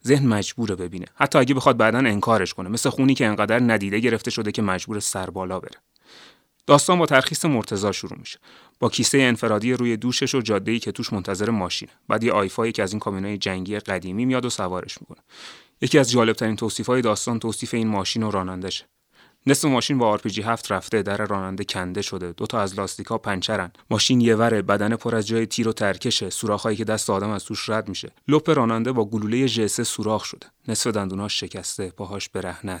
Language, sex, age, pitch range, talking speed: Persian, male, 30-49, 100-115 Hz, 200 wpm